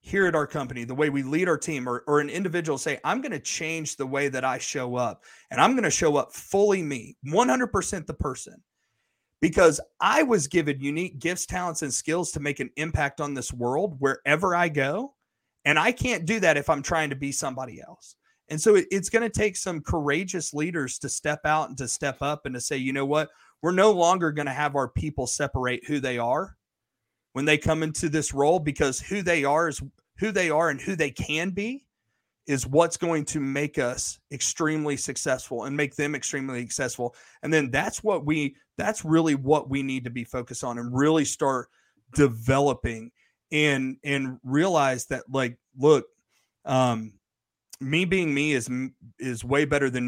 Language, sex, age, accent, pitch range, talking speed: English, male, 30-49, American, 125-160 Hz, 200 wpm